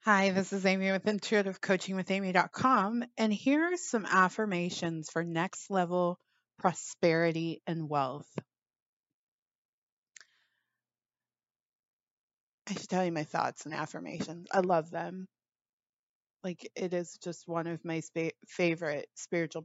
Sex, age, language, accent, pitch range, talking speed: female, 30-49, English, American, 160-185 Hz, 115 wpm